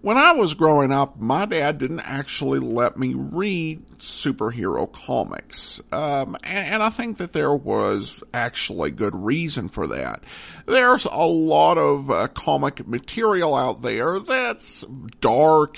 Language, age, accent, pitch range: English, 50-69, American, 130-210 Hz